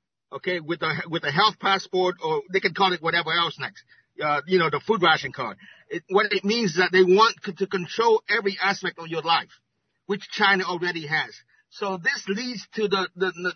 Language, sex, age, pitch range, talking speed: English, male, 50-69, 170-210 Hz, 215 wpm